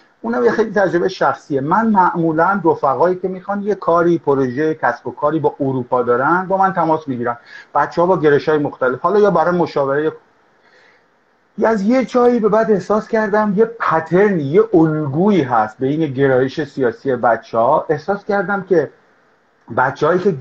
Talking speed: 165 wpm